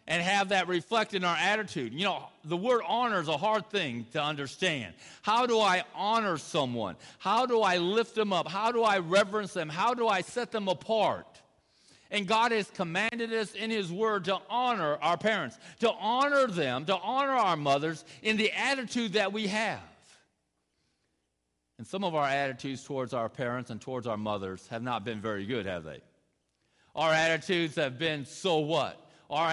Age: 50-69